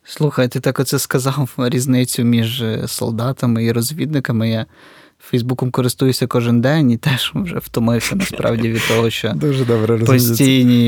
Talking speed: 130 wpm